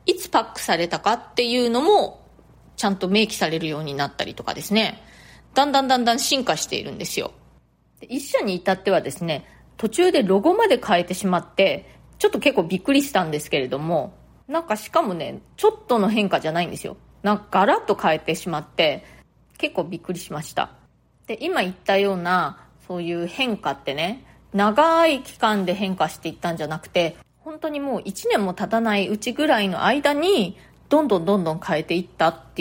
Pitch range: 180-280 Hz